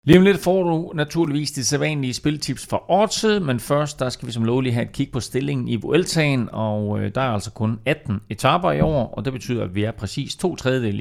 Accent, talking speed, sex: native, 230 wpm, male